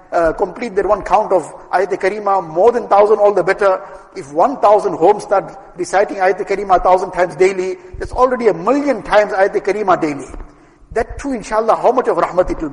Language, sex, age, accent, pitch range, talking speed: English, male, 60-79, Indian, 195-255 Hz, 200 wpm